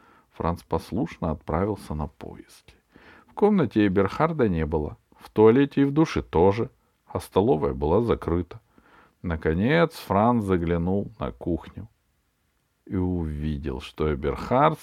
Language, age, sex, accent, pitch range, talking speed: Russian, 50-69, male, native, 95-140 Hz, 115 wpm